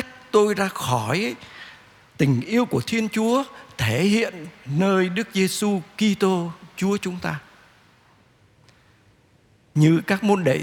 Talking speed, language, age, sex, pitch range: 120 wpm, Vietnamese, 60-79, male, 145-220 Hz